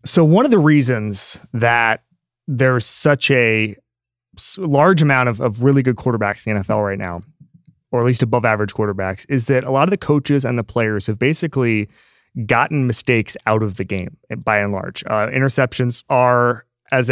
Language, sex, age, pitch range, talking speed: English, male, 30-49, 110-130 Hz, 180 wpm